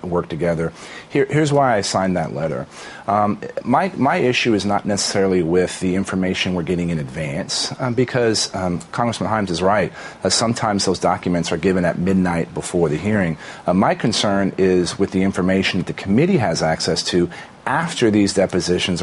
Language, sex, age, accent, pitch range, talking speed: English, male, 40-59, American, 90-110 Hz, 180 wpm